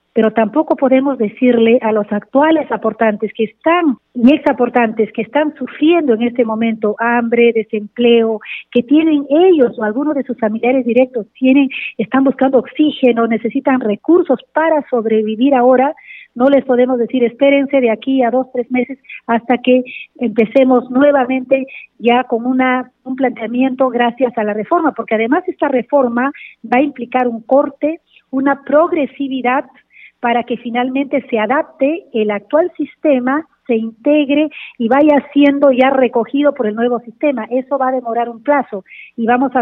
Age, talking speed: 40-59, 155 wpm